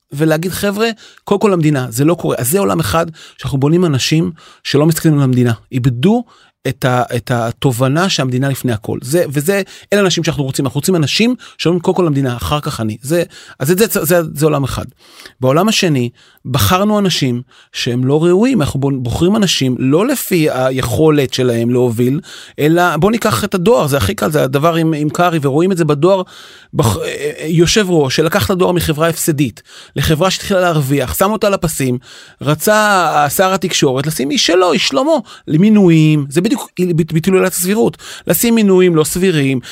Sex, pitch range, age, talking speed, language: male, 135-185 Hz, 30-49, 150 wpm, Hebrew